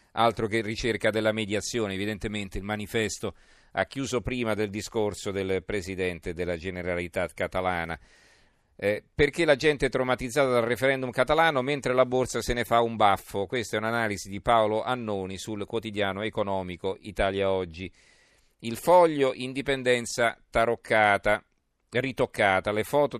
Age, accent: 40-59, native